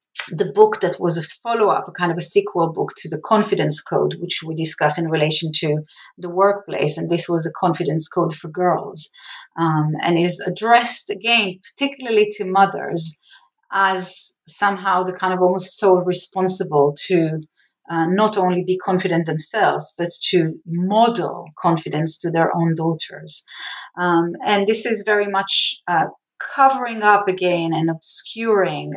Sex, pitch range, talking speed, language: female, 160-195 Hz, 155 wpm, English